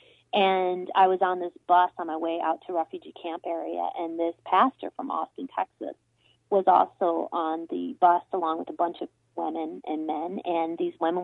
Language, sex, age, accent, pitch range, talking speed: English, female, 30-49, American, 165-235 Hz, 190 wpm